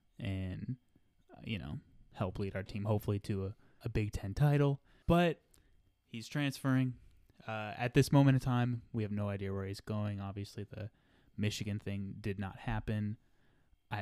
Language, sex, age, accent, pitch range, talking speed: English, male, 20-39, American, 100-115 Hz, 165 wpm